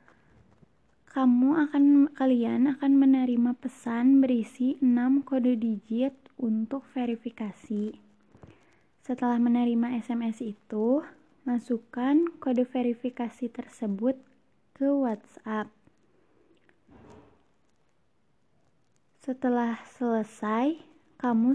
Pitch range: 230-265 Hz